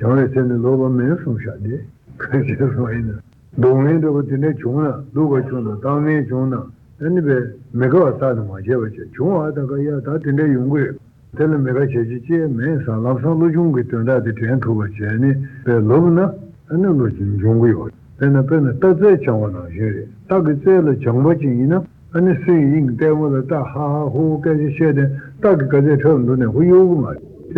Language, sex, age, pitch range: Italian, male, 60-79, 120-150 Hz